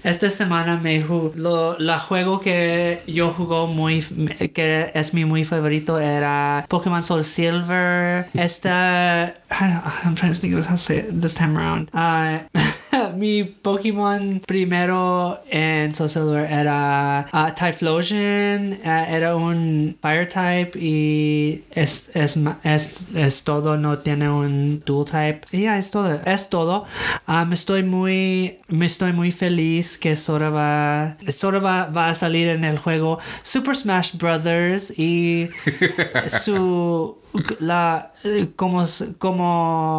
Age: 20-39